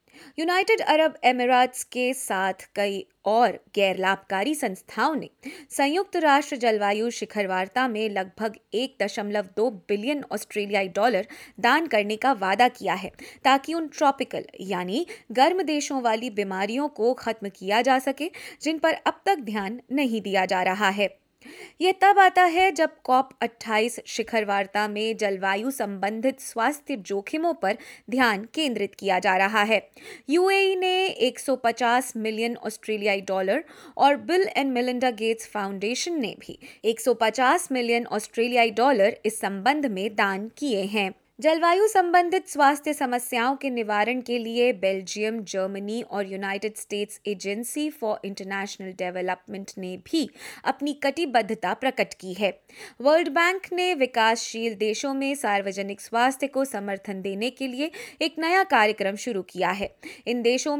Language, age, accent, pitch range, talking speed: Hindi, 20-39, native, 205-280 Hz, 140 wpm